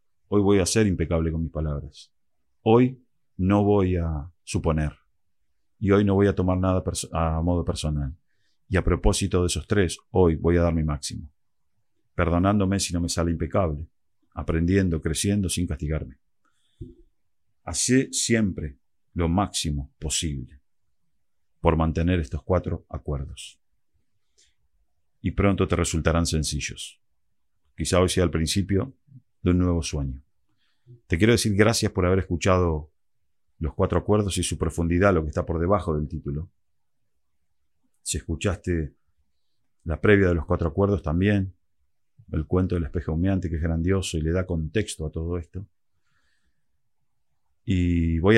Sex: male